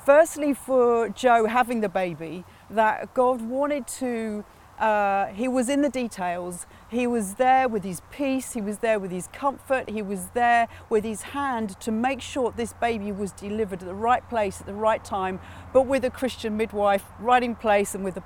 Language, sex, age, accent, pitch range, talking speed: English, female, 40-59, British, 210-255 Hz, 195 wpm